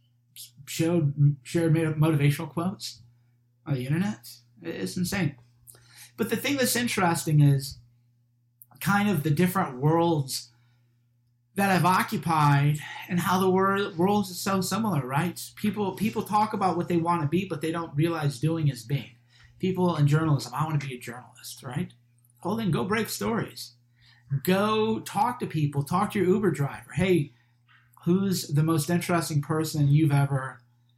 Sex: male